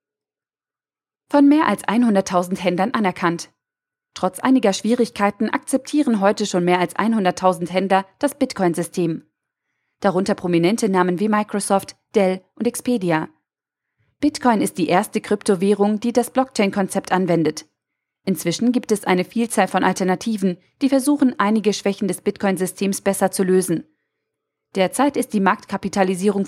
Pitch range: 180-220 Hz